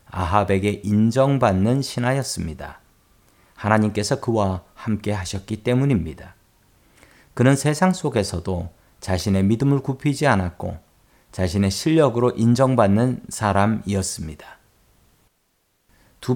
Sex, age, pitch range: male, 40-59, 95-130 Hz